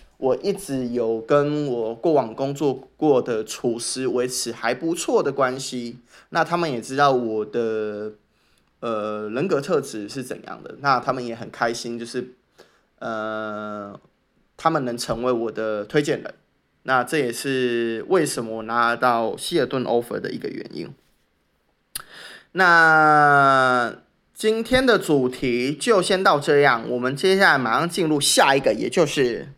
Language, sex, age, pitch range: English, male, 20-39, 115-155 Hz